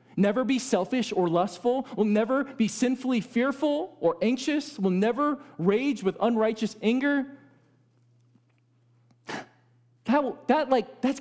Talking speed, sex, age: 100 wpm, male, 40-59